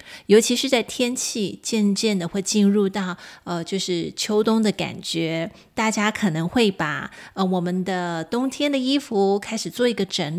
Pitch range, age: 180-240 Hz, 30-49